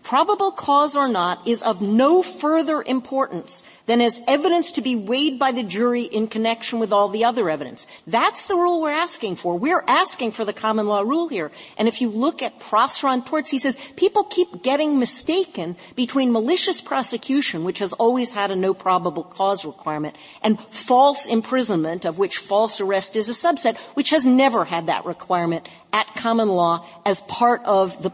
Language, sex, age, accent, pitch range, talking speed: English, female, 50-69, American, 215-295 Hz, 185 wpm